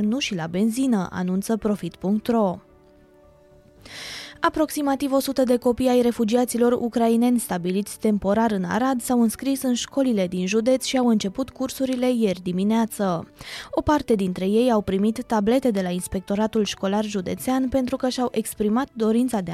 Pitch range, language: 195-250 Hz, Romanian